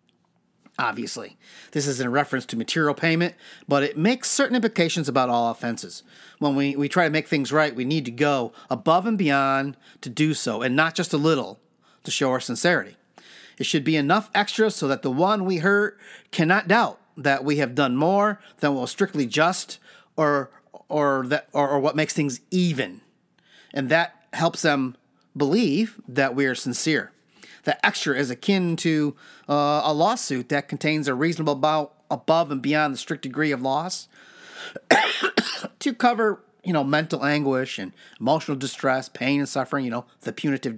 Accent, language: American, English